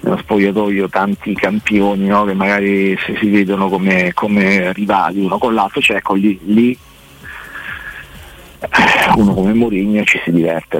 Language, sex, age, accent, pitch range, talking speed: Italian, male, 50-69, native, 90-105 Hz, 140 wpm